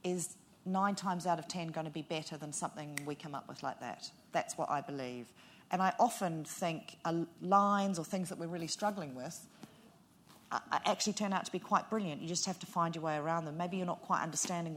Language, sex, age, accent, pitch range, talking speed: English, female, 40-59, Australian, 160-195 Hz, 225 wpm